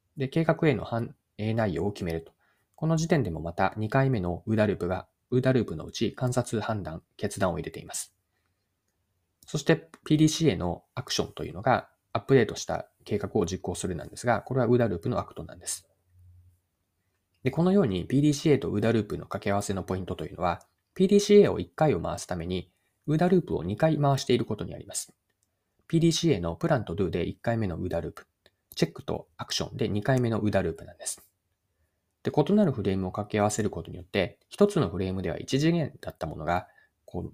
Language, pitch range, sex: Japanese, 90-140 Hz, male